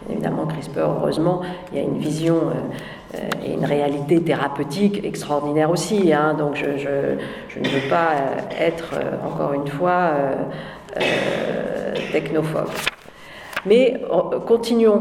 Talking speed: 130 wpm